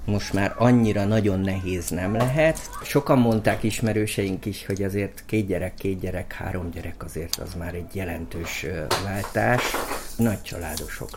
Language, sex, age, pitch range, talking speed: Hungarian, male, 50-69, 95-115 Hz, 145 wpm